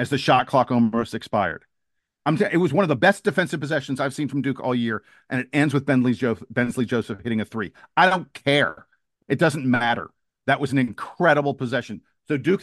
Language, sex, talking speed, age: English, male, 200 wpm, 50-69